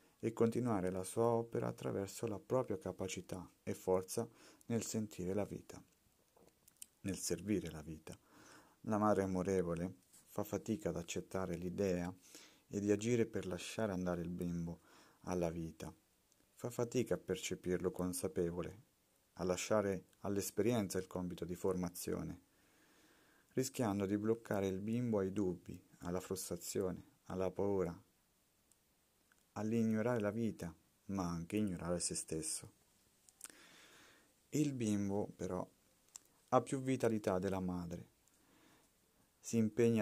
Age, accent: 40-59, native